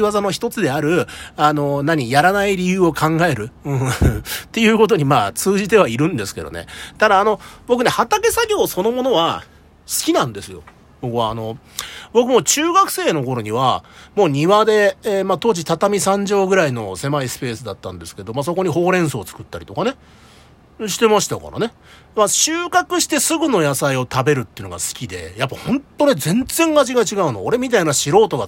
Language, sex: Japanese, male